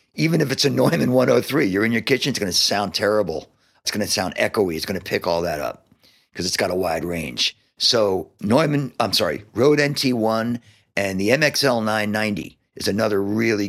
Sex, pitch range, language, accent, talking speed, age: male, 95-125 Hz, English, American, 200 wpm, 50-69